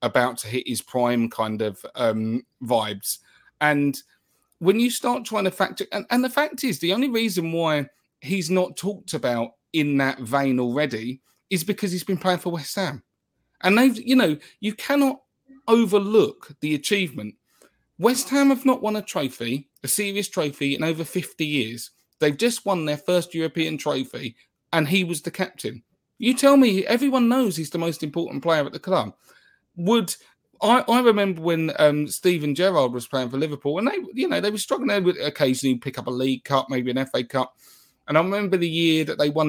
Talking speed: 195 wpm